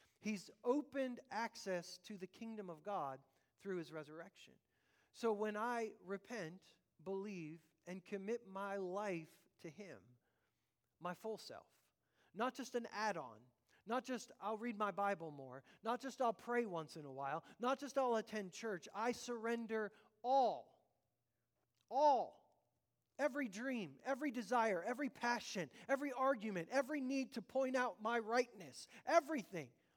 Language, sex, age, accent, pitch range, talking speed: English, male, 40-59, American, 160-235 Hz, 140 wpm